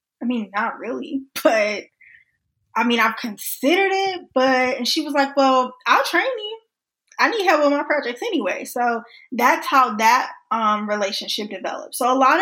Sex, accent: female, American